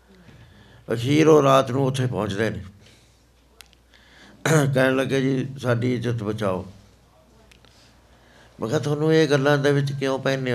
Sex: male